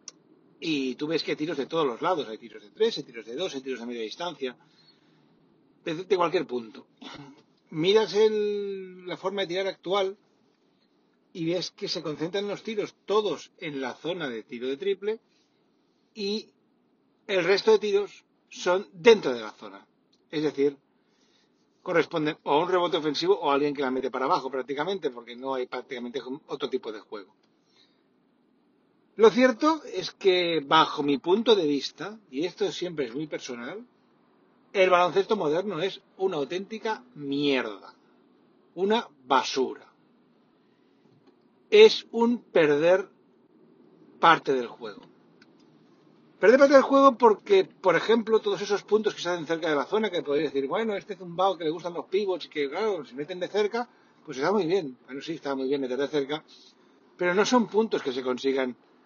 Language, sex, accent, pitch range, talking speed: Spanish, male, Spanish, 145-220 Hz, 170 wpm